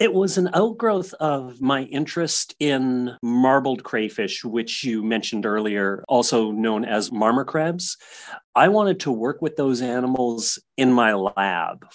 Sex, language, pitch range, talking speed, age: male, English, 110-145 Hz, 145 wpm, 40-59